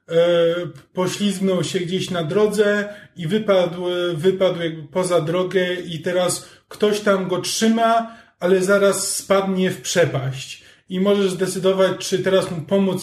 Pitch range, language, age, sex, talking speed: 175-205 Hz, Polish, 20-39, male, 135 wpm